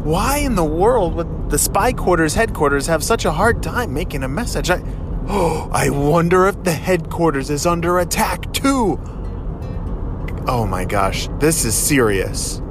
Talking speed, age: 160 wpm, 30-49